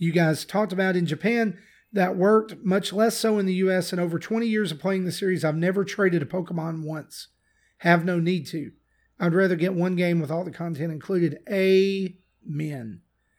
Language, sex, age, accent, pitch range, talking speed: English, male, 40-59, American, 170-200 Hz, 200 wpm